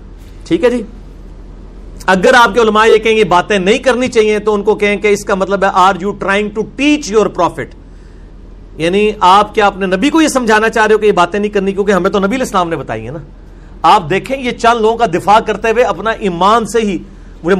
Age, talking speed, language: 50-69, 95 wpm, Urdu